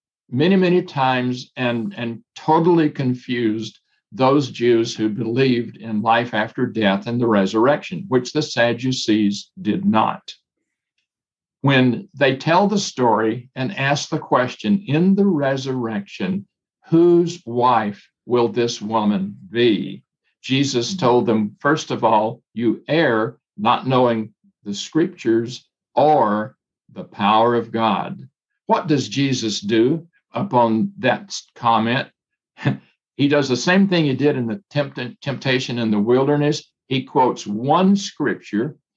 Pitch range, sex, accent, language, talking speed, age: 115-165 Hz, male, American, English, 125 wpm, 60-79